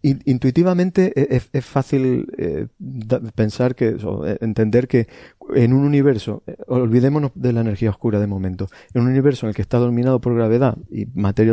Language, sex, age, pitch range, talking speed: Spanish, male, 30-49, 110-130 Hz, 160 wpm